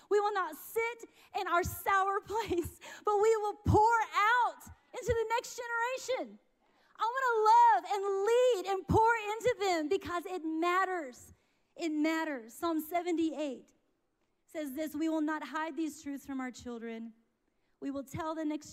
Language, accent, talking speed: English, American, 155 wpm